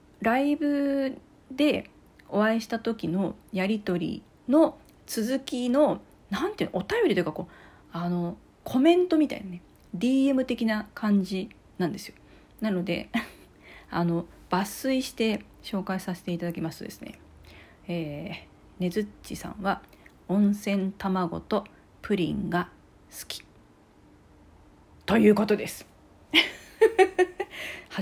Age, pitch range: 40-59, 175-260 Hz